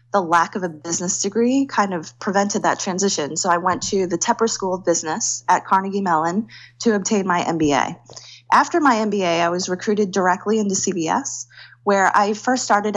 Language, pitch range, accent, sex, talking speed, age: English, 170-210 Hz, American, female, 185 wpm, 20-39